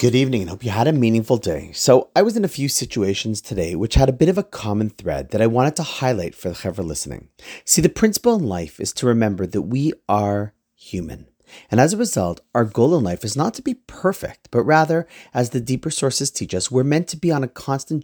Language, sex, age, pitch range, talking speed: English, male, 40-59, 100-155 Hz, 245 wpm